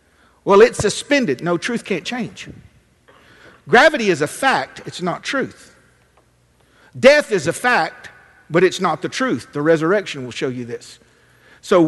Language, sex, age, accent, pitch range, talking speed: English, male, 50-69, American, 175-280 Hz, 150 wpm